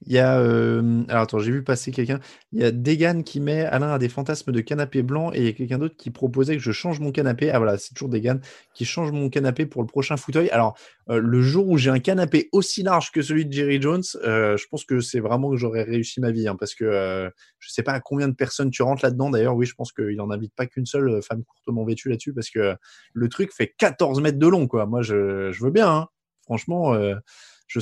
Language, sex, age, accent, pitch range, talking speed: French, male, 20-39, French, 110-140 Hz, 260 wpm